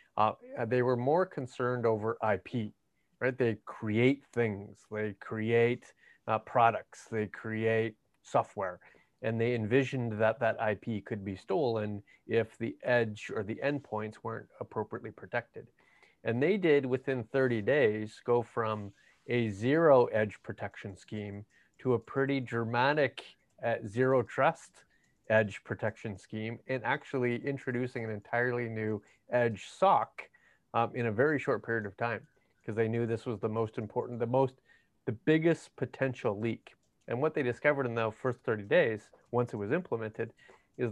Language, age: English, 30-49